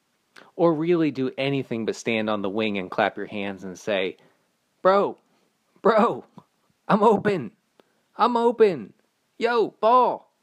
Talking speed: 130 wpm